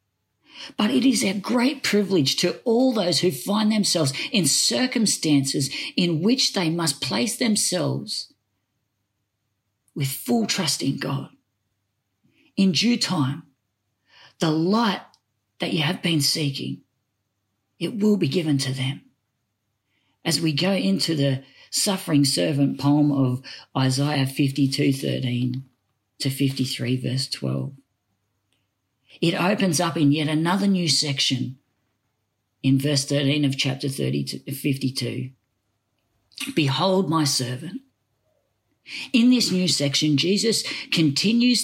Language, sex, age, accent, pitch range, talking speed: English, female, 40-59, Australian, 130-190 Hz, 120 wpm